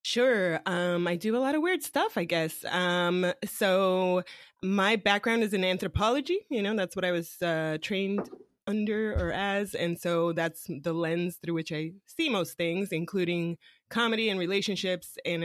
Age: 20-39